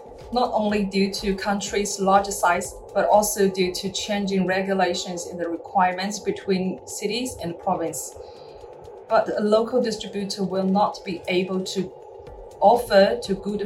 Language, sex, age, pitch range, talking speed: English, female, 30-49, 185-230 Hz, 140 wpm